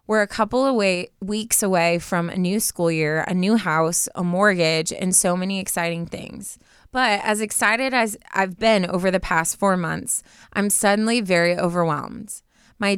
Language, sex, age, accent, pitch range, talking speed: English, female, 20-39, American, 170-200 Hz, 170 wpm